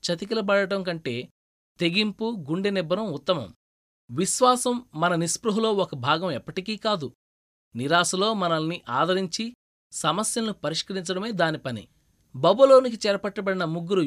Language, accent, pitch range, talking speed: Telugu, native, 150-210 Hz, 95 wpm